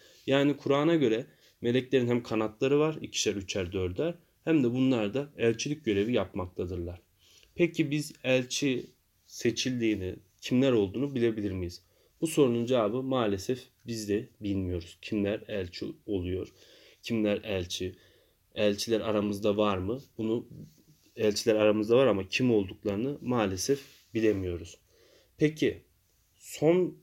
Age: 30-49